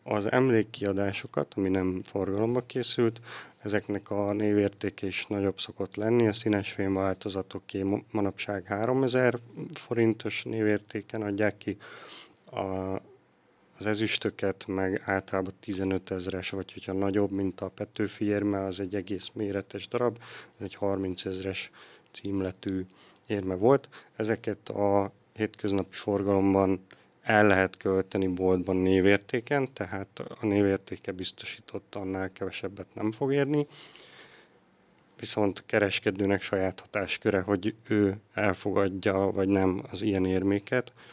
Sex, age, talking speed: male, 30-49, 110 wpm